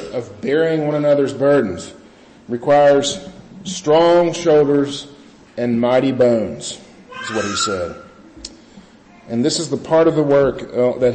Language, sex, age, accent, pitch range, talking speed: English, male, 40-59, American, 115-135 Hz, 135 wpm